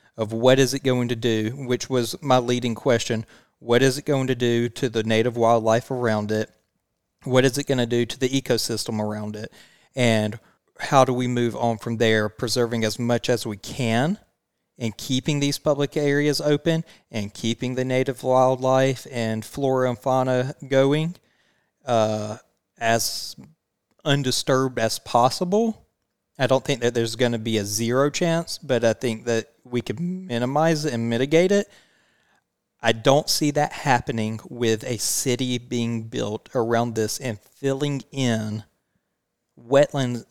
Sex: male